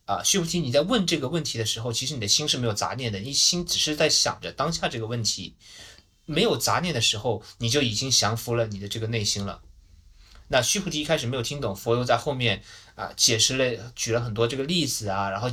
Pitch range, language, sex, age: 110-150 Hz, Chinese, male, 20-39